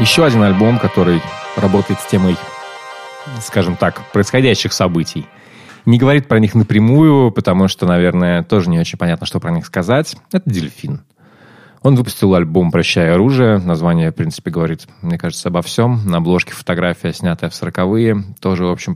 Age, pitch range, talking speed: 20-39, 85-125 Hz, 160 wpm